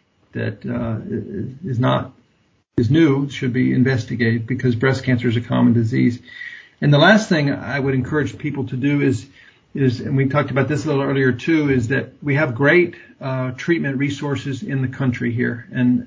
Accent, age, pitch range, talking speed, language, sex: American, 50-69, 125-140 Hz, 185 wpm, English, male